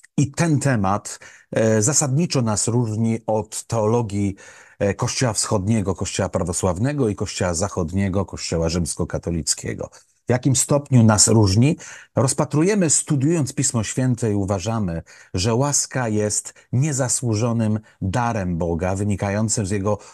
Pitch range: 95-130 Hz